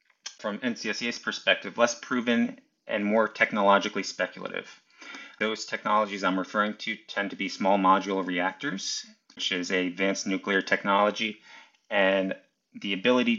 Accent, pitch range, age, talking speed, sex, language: American, 100-120 Hz, 30-49, 130 wpm, male, English